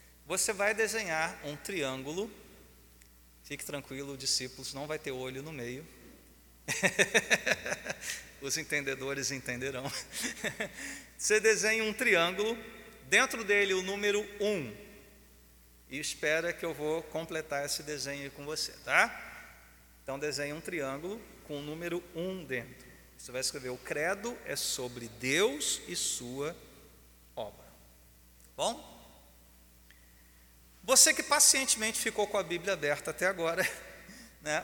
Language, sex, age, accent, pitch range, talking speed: Portuguese, male, 40-59, Brazilian, 135-220 Hz, 125 wpm